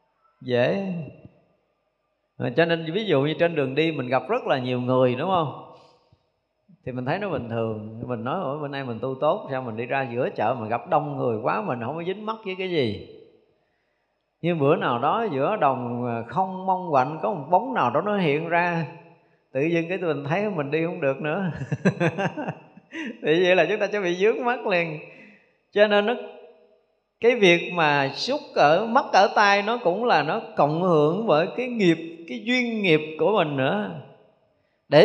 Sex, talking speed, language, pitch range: male, 195 wpm, Vietnamese, 145-205 Hz